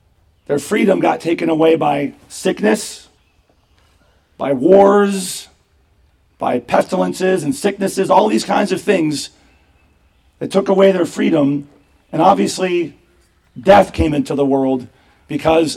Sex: male